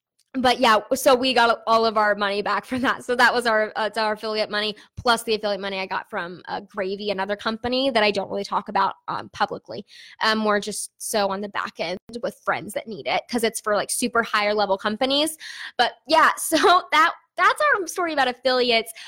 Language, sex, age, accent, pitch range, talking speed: English, female, 10-29, American, 220-305 Hz, 215 wpm